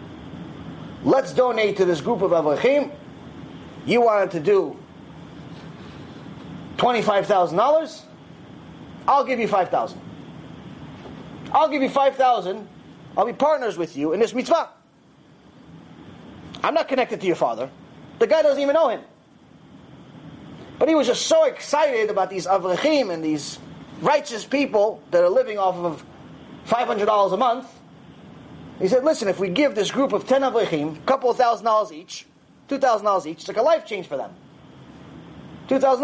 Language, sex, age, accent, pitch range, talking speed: English, male, 30-49, American, 195-285 Hz, 160 wpm